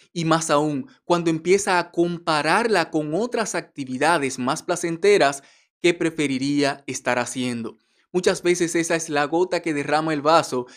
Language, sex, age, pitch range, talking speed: Spanish, male, 20-39, 140-175 Hz, 145 wpm